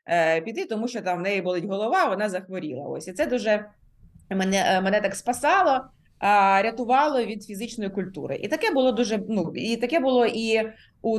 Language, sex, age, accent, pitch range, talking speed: Ukrainian, female, 30-49, native, 195-250 Hz, 175 wpm